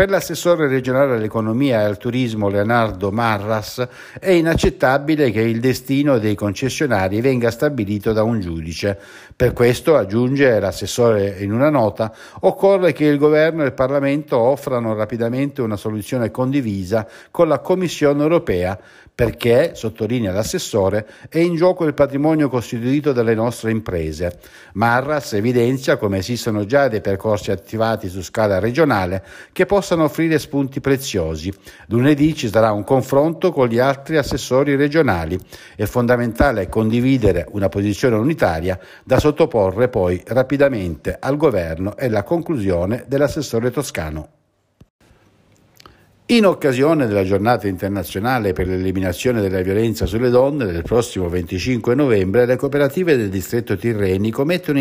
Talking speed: 130 wpm